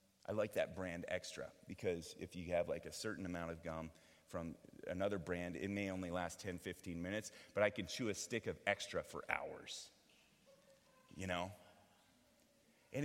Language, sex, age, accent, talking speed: English, male, 30-49, American, 175 wpm